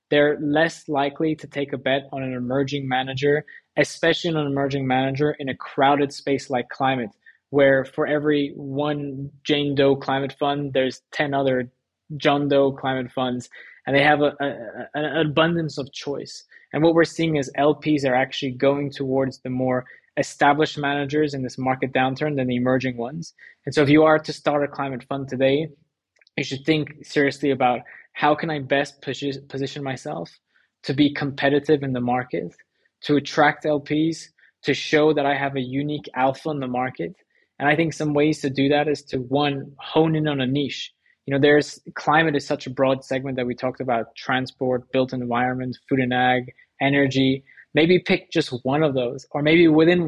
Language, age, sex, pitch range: English, 20-39, male, 130-150 Hz